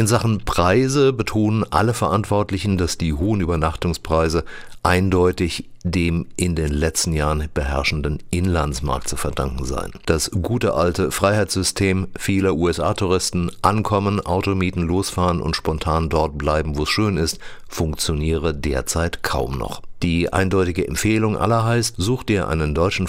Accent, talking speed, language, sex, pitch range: German, 135 wpm, German, male, 80-95 Hz